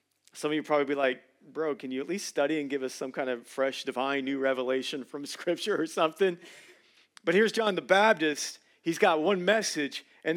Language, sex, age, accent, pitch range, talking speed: English, male, 40-59, American, 150-205 Hz, 210 wpm